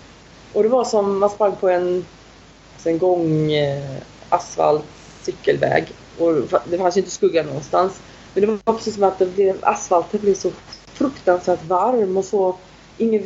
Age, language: 30-49, Swedish